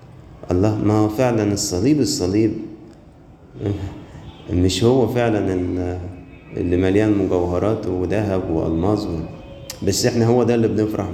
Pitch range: 100-120 Hz